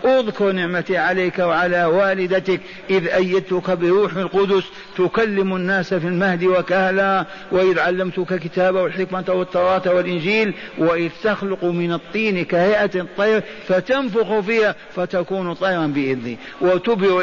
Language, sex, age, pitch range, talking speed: Arabic, male, 50-69, 170-215 Hz, 110 wpm